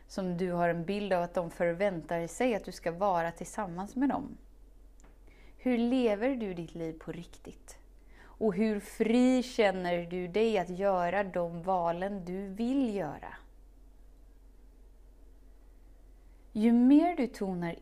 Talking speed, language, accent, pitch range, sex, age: 140 wpm, Swedish, native, 175-215 Hz, female, 30-49